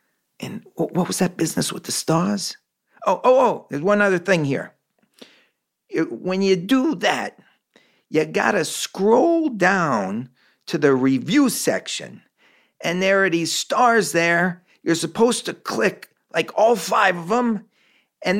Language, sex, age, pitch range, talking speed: English, male, 50-69, 170-245 Hz, 145 wpm